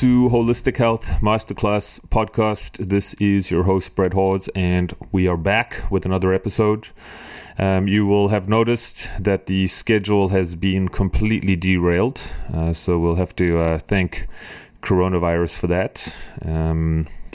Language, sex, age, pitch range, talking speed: English, male, 30-49, 90-105 Hz, 140 wpm